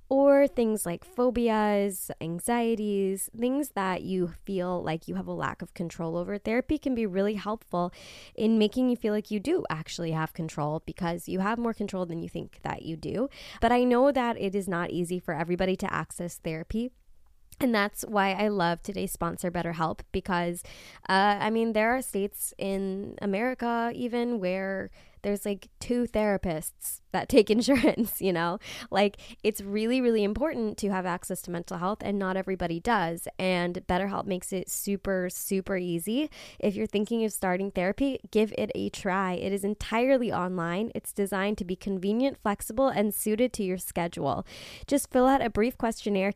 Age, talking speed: 20-39, 175 wpm